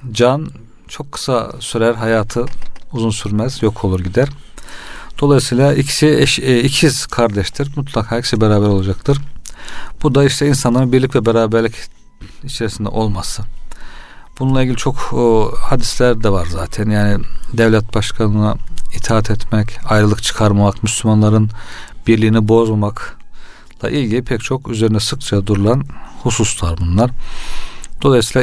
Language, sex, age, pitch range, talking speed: Turkish, male, 40-59, 105-120 Hz, 120 wpm